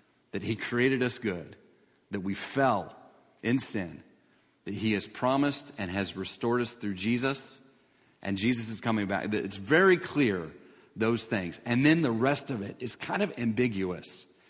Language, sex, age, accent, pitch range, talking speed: English, male, 40-59, American, 115-170 Hz, 165 wpm